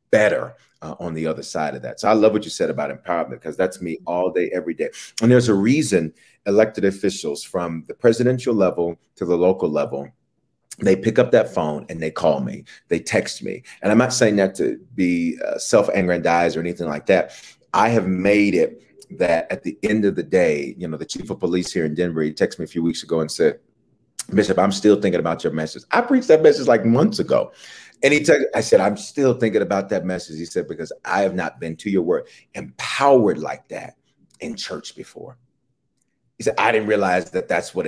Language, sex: English, male